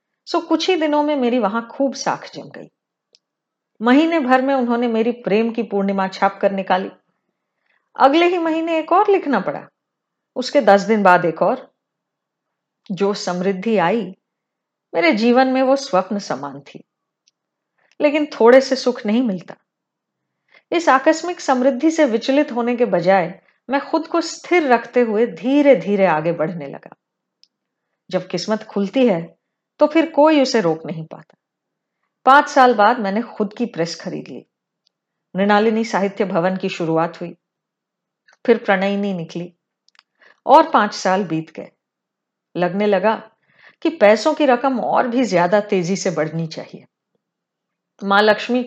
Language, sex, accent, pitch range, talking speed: Hindi, female, native, 190-265 Hz, 145 wpm